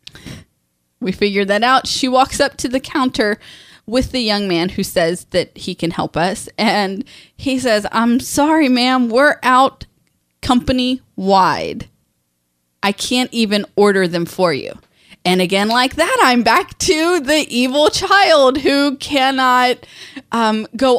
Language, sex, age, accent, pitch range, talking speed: English, female, 20-39, American, 190-255 Hz, 150 wpm